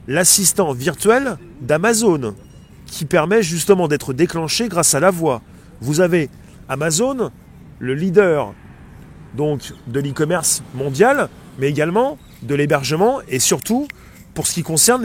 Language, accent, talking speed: French, French, 120 wpm